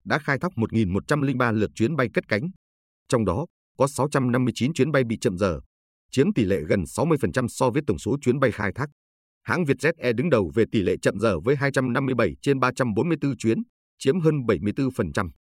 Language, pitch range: Vietnamese, 100-135 Hz